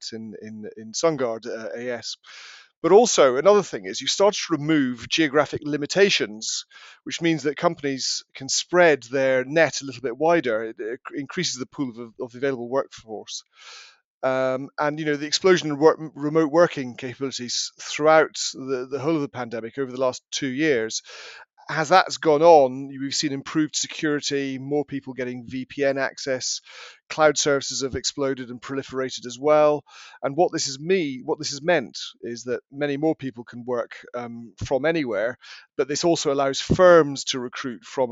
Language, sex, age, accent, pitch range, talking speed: English, male, 40-59, British, 125-155 Hz, 175 wpm